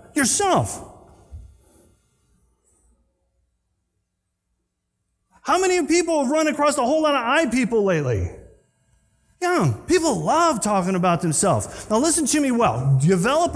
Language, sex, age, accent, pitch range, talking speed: English, male, 30-49, American, 145-240 Hz, 115 wpm